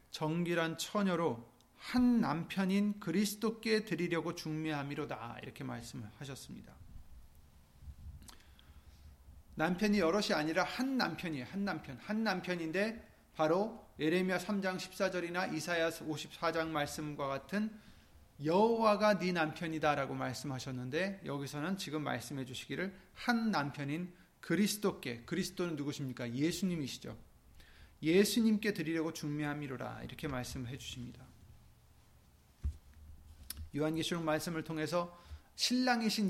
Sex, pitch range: male, 120-185 Hz